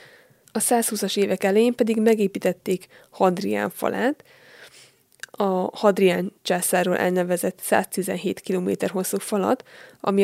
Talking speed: 100 wpm